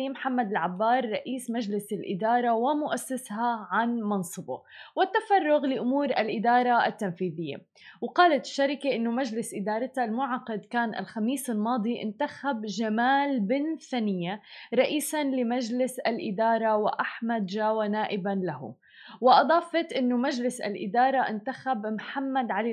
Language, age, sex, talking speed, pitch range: Arabic, 20-39, female, 105 wpm, 215-260 Hz